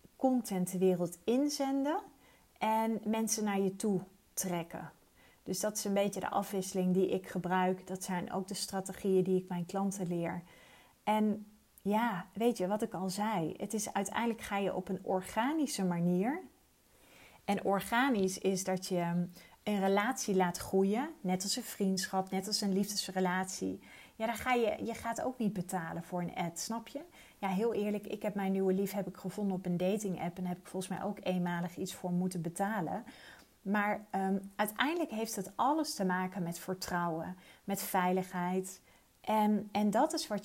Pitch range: 185-215 Hz